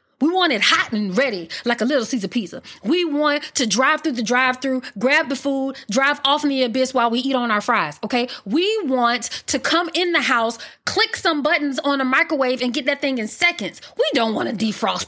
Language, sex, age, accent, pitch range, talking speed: English, female, 20-39, American, 240-325 Hz, 230 wpm